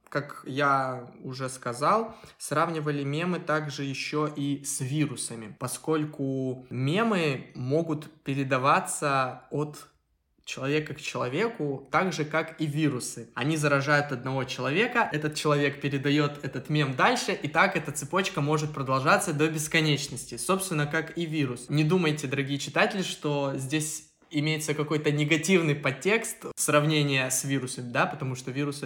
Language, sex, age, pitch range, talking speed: Russian, male, 20-39, 135-160 Hz, 135 wpm